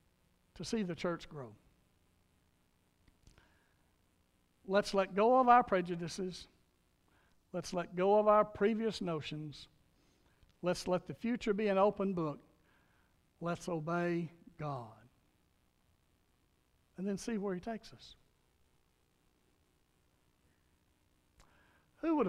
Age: 60-79